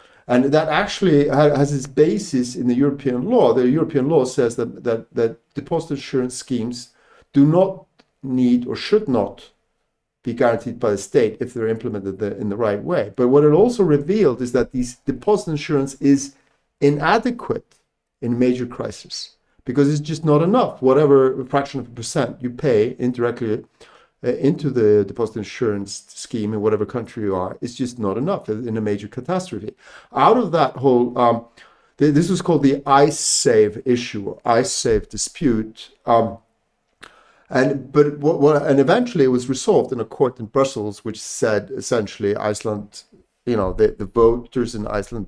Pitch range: 115-145 Hz